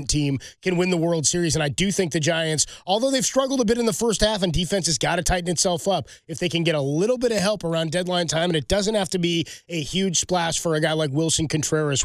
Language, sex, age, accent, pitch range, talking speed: English, male, 20-39, American, 160-195 Hz, 280 wpm